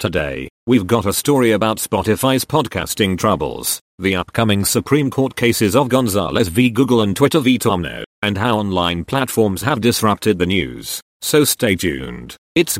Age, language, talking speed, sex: 40-59, English, 160 wpm, male